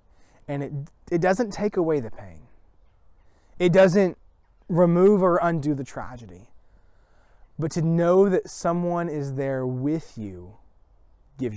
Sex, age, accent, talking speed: male, 20-39, American, 130 wpm